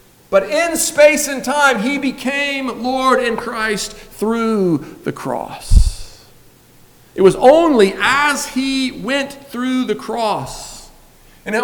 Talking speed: 120 wpm